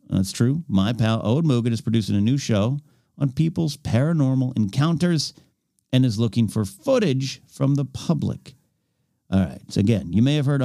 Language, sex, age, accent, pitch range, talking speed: English, male, 50-69, American, 110-150 Hz, 175 wpm